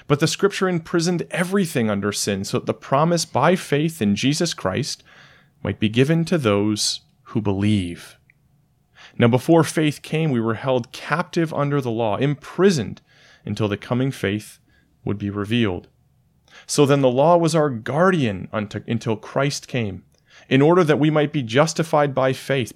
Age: 30-49